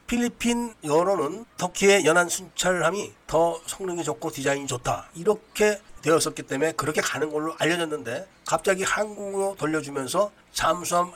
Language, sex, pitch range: Korean, male, 155-200 Hz